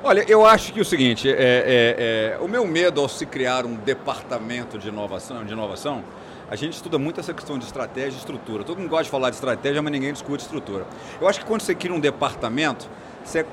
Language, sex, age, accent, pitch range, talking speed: Portuguese, male, 40-59, Brazilian, 130-170 Hz, 210 wpm